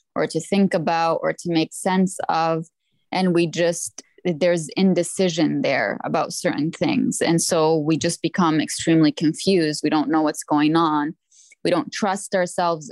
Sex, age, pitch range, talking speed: female, 20-39, 160-185 Hz, 165 wpm